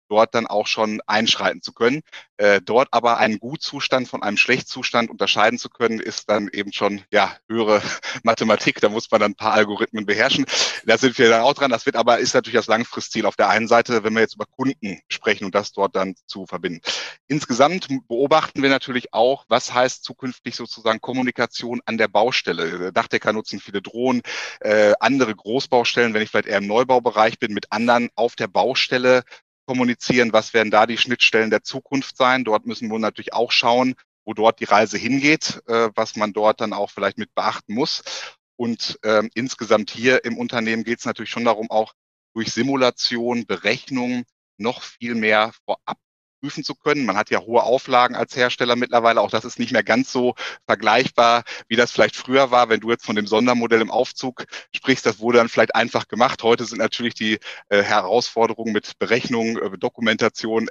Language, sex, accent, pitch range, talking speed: German, male, German, 110-125 Hz, 190 wpm